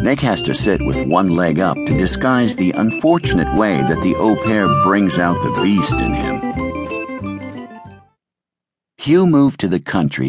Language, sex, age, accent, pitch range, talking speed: English, male, 60-79, American, 75-115 Hz, 165 wpm